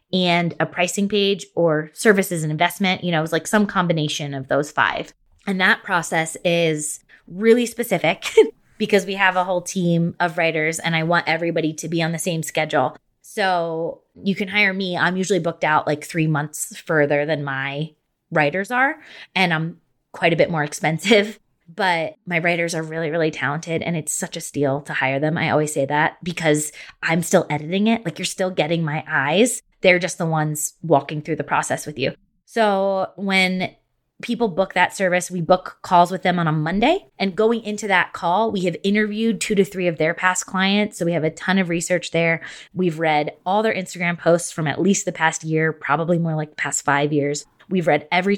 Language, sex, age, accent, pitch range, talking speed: English, female, 20-39, American, 155-185 Hz, 205 wpm